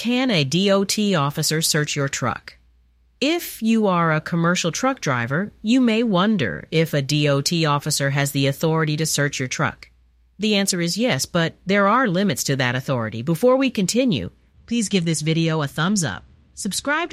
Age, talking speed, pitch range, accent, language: 40-59, 175 wpm, 140-220 Hz, American, English